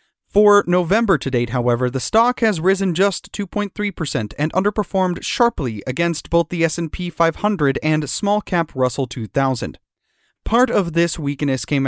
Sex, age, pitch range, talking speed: male, 30-49, 140-190 Hz, 140 wpm